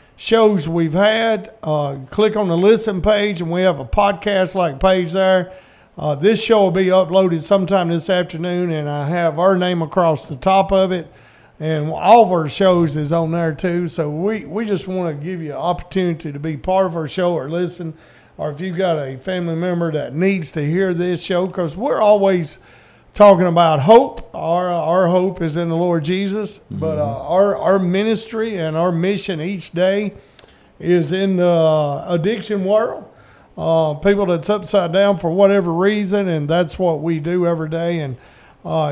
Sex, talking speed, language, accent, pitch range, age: male, 185 wpm, English, American, 160-195 Hz, 50-69